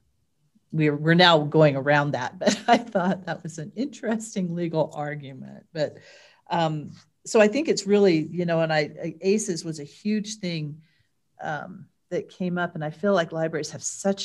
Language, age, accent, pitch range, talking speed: English, 40-59, American, 150-185 Hz, 180 wpm